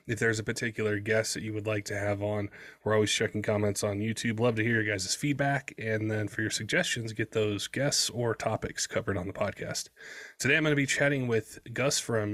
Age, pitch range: 20-39, 105-125 Hz